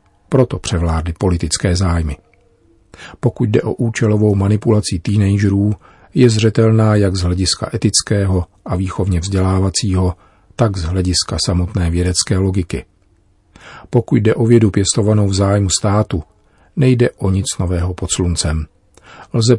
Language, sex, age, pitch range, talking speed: Czech, male, 40-59, 90-110 Hz, 125 wpm